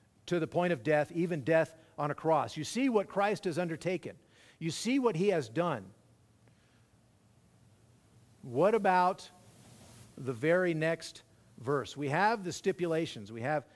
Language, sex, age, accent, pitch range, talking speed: English, male, 50-69, American, 140-185 Hz, 150 wpm